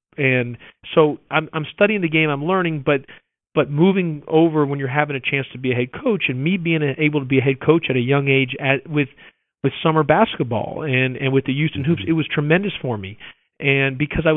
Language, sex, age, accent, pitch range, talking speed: English, male, 40-59, American, 135-160 Hz, 230 wpm